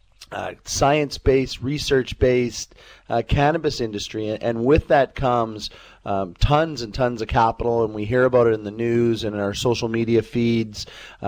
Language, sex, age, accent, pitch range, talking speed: English, male, 30-49, American, 110-125 Hz, 155 wpm